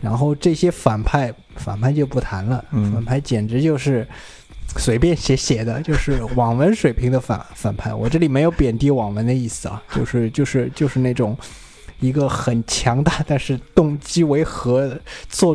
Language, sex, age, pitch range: Chinese, male, 20-39, 120-155 Hz